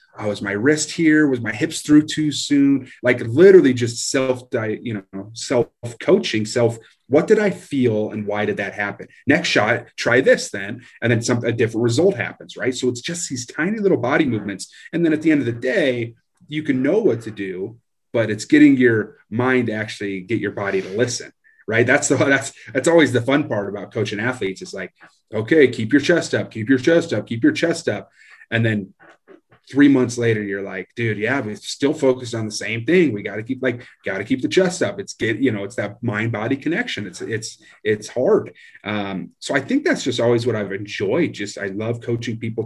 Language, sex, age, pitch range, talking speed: English, male, 30-49, 105-130 Hz, 220 wpm